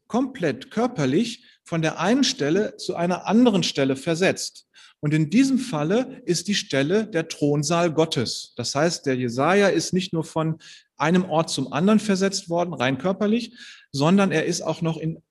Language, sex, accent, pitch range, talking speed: German, male, German, 150-215 Hz, 170 wpm